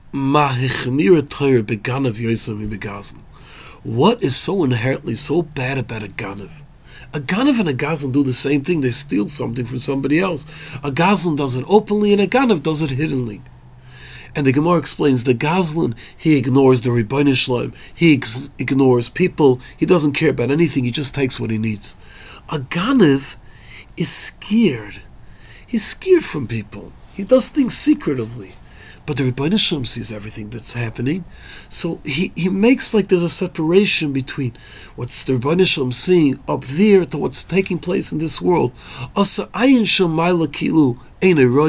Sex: male